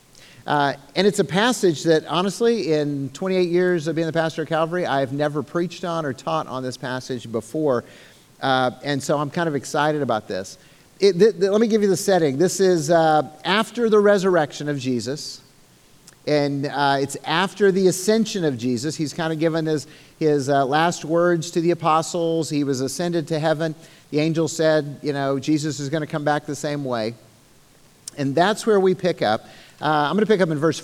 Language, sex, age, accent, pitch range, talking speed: English, male, 50-69, American, 140-180 Hz, 200 wpm